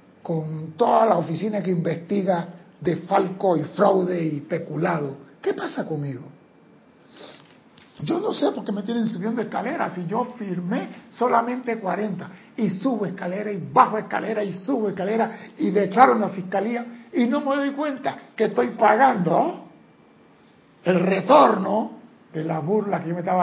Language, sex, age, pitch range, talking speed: Spanish, male, 60-79, 180-225 Hz, 155 wpm